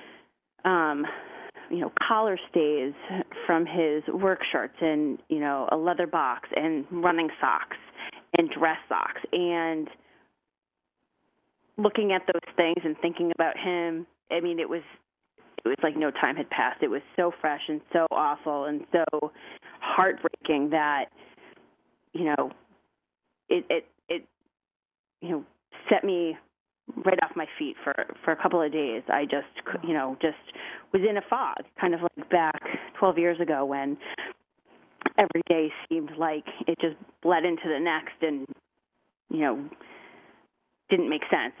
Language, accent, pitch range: English, American, 155-185 Hz